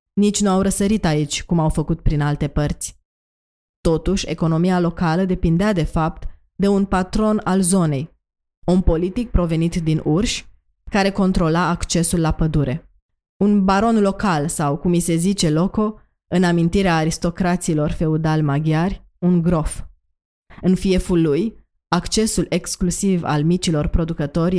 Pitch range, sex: 160-190 Hz, female